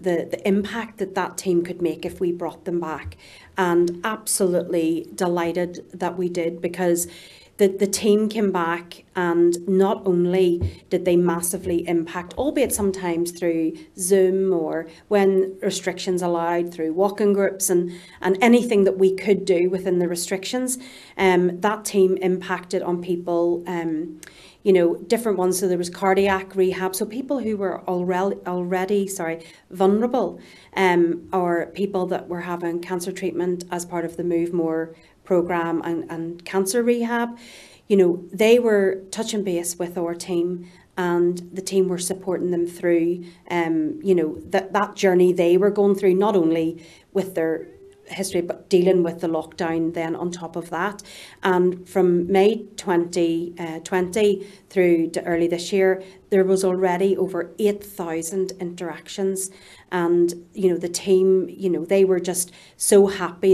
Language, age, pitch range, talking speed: English, 40-59, 170-195 Hz, 155 wpm